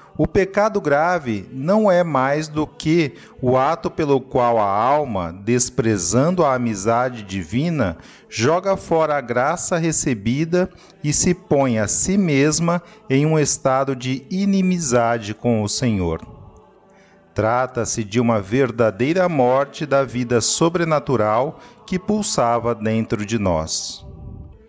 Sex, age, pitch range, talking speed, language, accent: male, 40-59, 120-165 Hz, 120 wpm, Portuguese, Brazilian